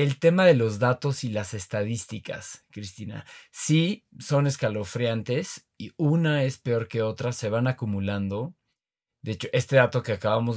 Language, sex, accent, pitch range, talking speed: Spanish, male, Mexican, 110-140 Hz, 155 wpm